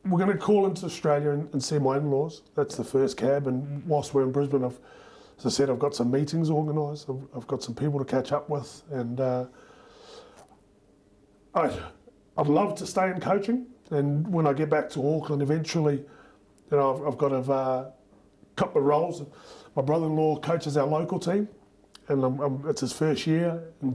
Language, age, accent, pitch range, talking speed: English, 30-49, Australian, 135-160 Hz, 195 wpm